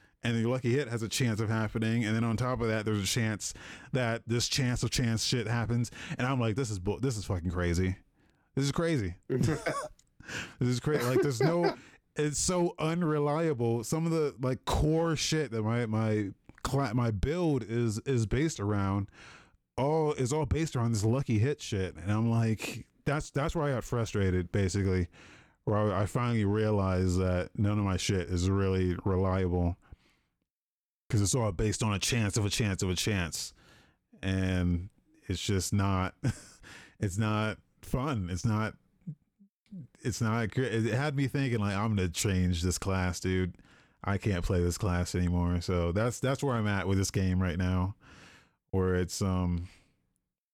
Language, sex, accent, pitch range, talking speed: English, male, American, 95-130 Hz, 180 wpm